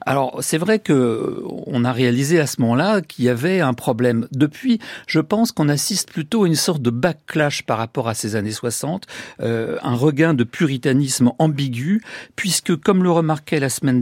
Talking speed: 190 wpm